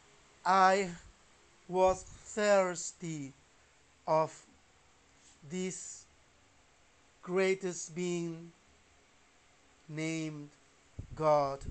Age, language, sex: 50-69, Spanish, male